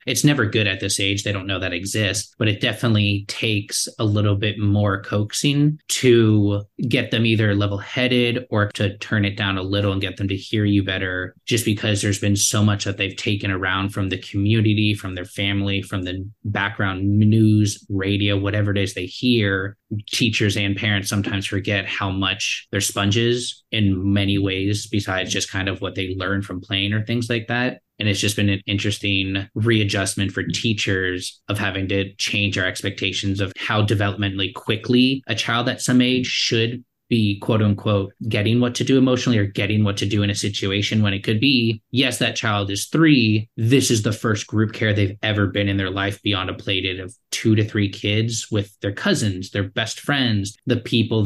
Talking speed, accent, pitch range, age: 195 wpm, American, 100-115 Hz, 20-39